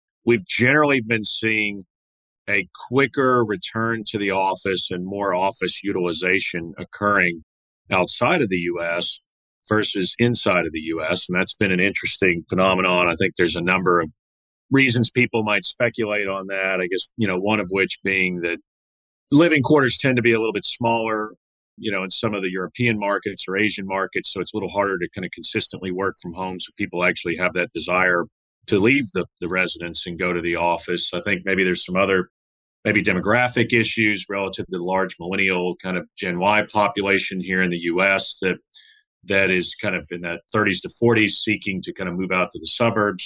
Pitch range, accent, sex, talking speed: 90-110 Hz, American, male, 195 wpm